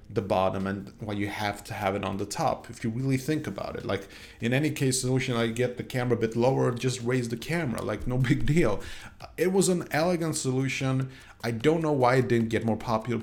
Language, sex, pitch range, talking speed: English, male, 105-135 Hz, 235 wpm